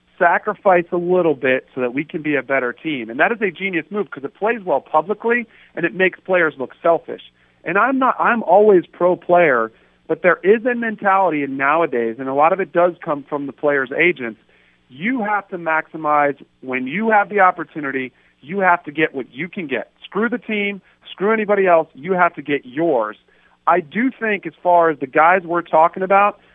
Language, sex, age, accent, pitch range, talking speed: English, male, 40-59, American, 145-195 Hz, 205 wpm